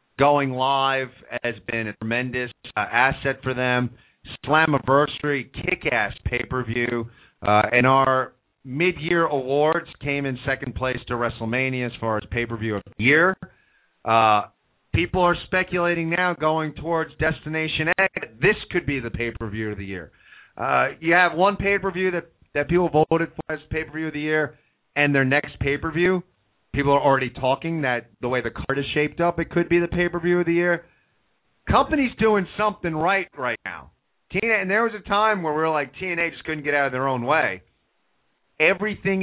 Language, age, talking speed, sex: English, 30-49, 170 wpm, male